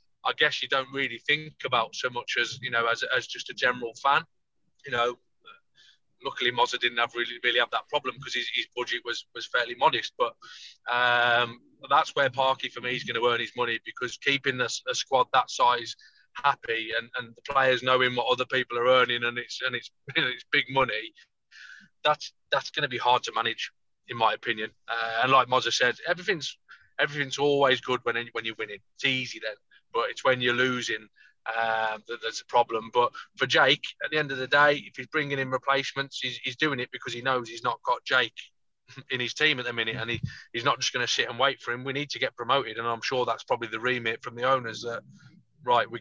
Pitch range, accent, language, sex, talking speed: 120-150 Hz, British, English, male, 225 wpm